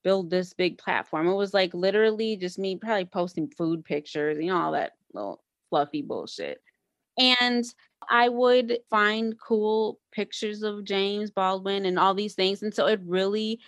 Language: English